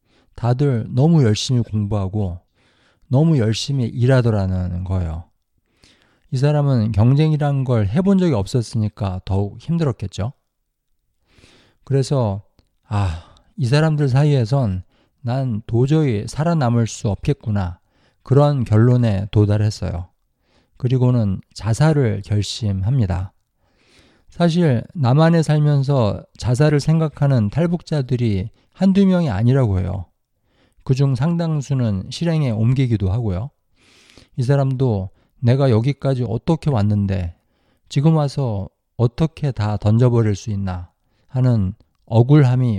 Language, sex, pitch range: Korean, male, 100-140 Hz